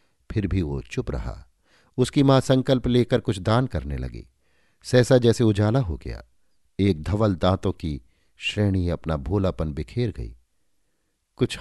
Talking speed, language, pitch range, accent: 145 wpm, Hindi, 80-115 Hz, native